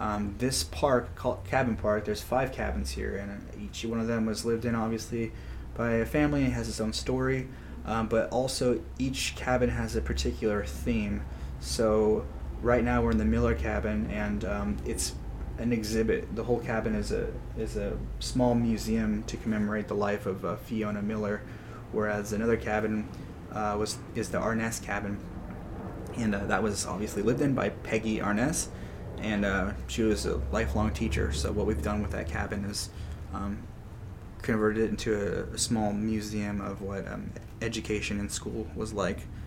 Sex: male